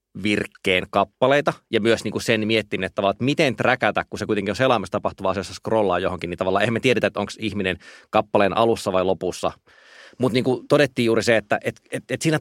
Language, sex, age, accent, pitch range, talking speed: Finnish, male, 30-49, native, 100-135 Hz, 170 wpm